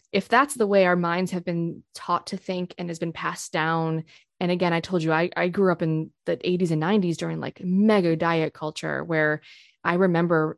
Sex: female